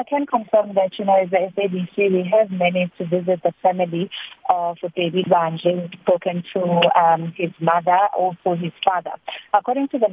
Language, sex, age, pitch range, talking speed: English, female, 30-49, 175-200 Hz, 190 wpm